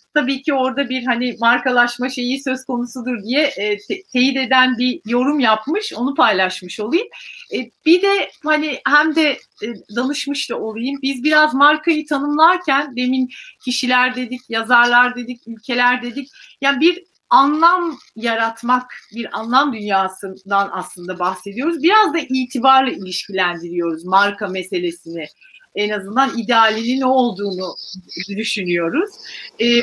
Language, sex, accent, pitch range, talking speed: Turkish, female, native, 230-290 Hz, 120 wpm